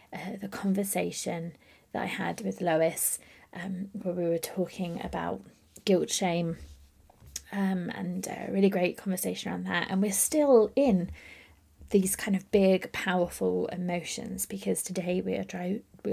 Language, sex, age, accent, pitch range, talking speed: English, female, 20-39, British, 150-205 Hz, 140 wpm